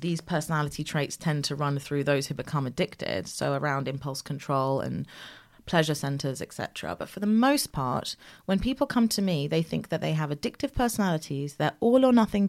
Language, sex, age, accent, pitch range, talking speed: English, female, 30-49, British, 155-205 Hz, 185 wpm